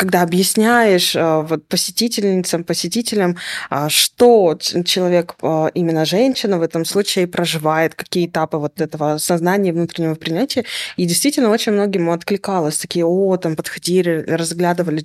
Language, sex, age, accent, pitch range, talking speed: Russian, female, 20-39, native, 165-195 Hz, 115 wpm